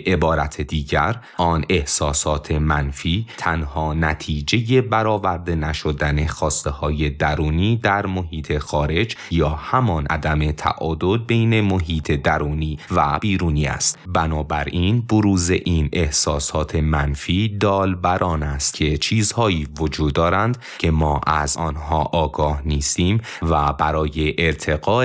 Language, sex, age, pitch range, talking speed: Persian, male, 30-49, 75-90 Hz, 110 wpm